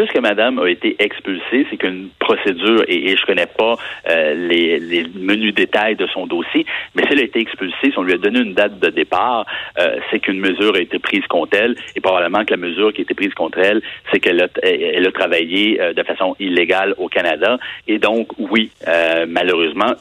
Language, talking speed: French, 220 wpm